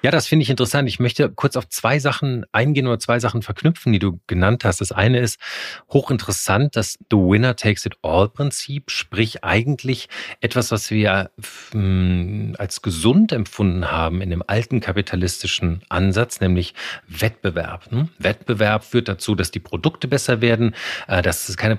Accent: German